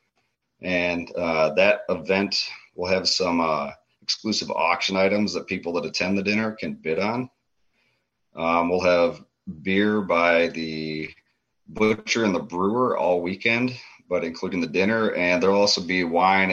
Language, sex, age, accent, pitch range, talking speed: English, male, 30-49, American, 85-105 Hz, 155 wpm